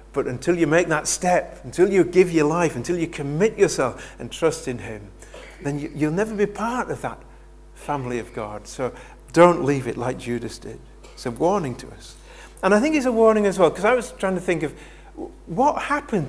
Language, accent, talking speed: English, British, 215 wpm